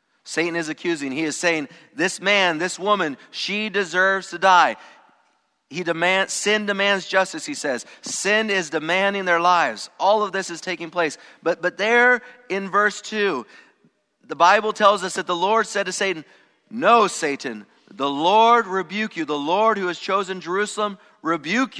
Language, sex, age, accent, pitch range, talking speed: English, male, 40-59, American, 135-200 Hz, 170 wpm